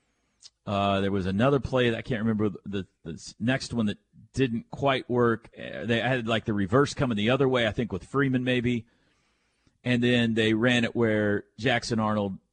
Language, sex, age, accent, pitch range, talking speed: English, male, 40-59, American, 110-145 Hz, 185 wpm